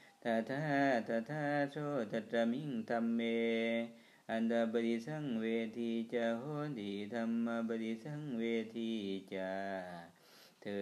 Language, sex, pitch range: Thai, male, 100-115 Hz